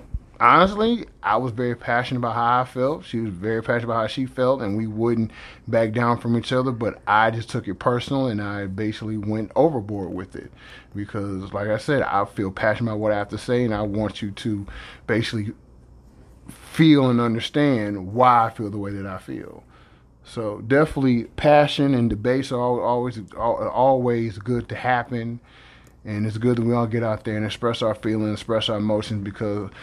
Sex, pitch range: male, 100-120 Hz